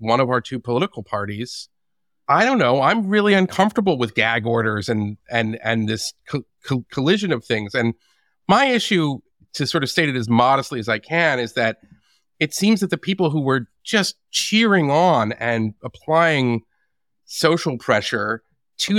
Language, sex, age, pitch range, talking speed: English, male, 40-59, 120-175 Hz, 170 wpm